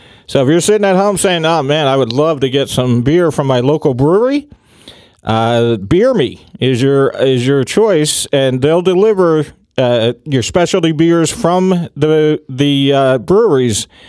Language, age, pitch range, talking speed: English, 40-59, 135-185 Hz, 165 wpm